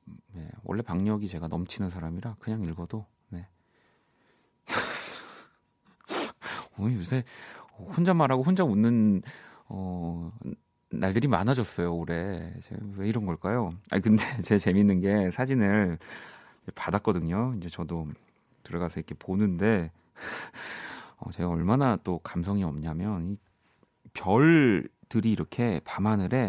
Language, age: Korean, 40-59